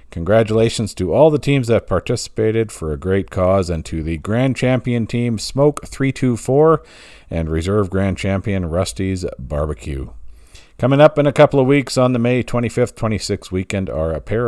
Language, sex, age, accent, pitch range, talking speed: English, male, 50-69, American, 90-125 Hz, 170 wpm